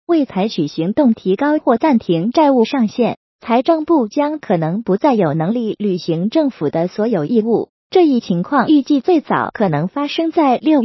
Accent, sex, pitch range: native, female, 210-295 Hz